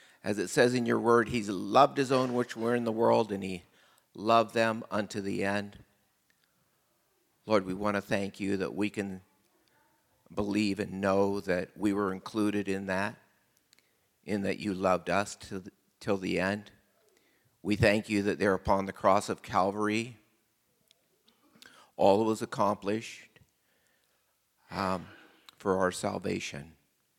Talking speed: 145 wpm